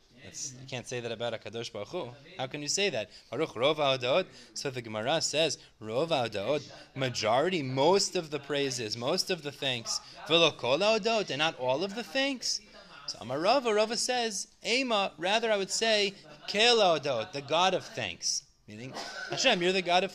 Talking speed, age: 150 wpm, 20-39